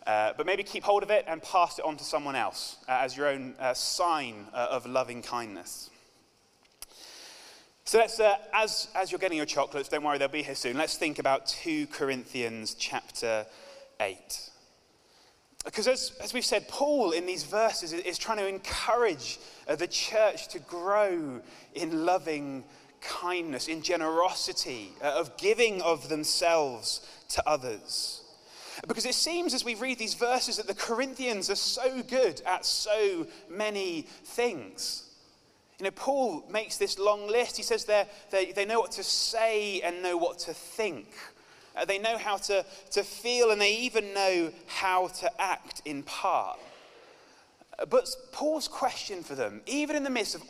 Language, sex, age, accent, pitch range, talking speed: English, male, 20-39, British, 170-250 Hz, 165 wpm